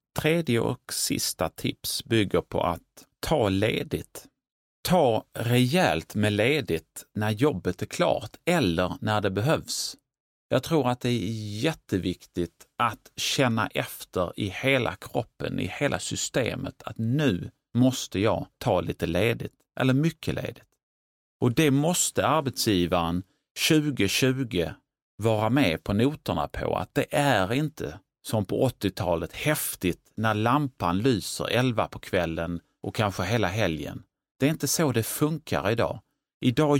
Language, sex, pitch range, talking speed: Swedish, male, 90-140 Hz, 135 wpm